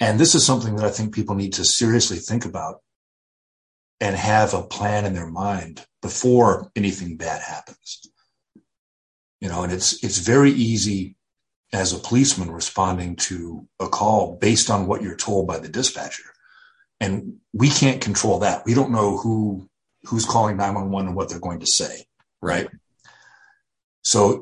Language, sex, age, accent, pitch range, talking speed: English, male, 40-59, American, 95-120 Hz, 160 wpm